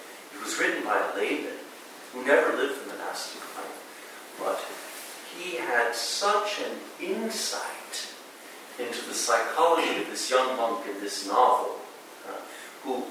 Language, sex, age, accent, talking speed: English, male, 50-69, American, 140 wpm